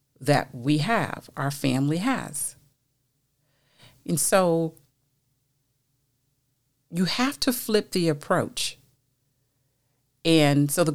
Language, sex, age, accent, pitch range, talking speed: English, female, 50-69, American, 135-170 Hz, 95 wpm